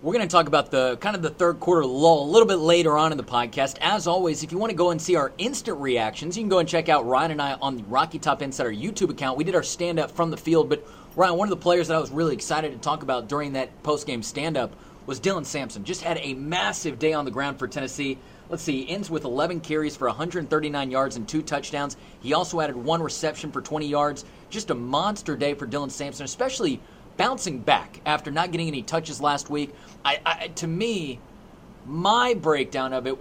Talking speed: 240 wpm